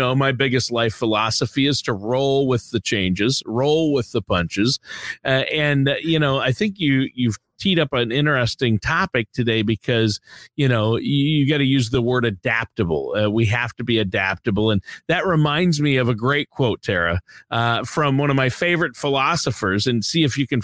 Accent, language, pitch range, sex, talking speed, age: American, English, 115-145 Hz, male, 200 wpm, 40-59